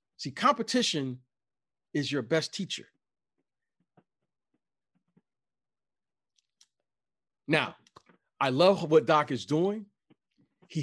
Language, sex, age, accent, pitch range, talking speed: English, male, 40-59, American, 130-185 Hz, 80 wpm